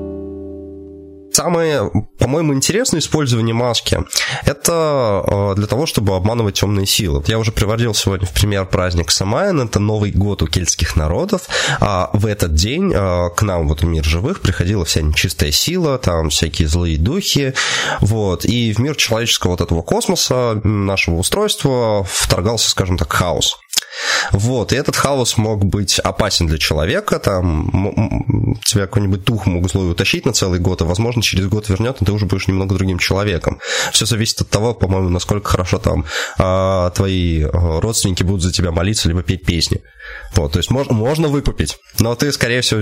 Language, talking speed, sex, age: Russian, 170 wpm, male, 20-39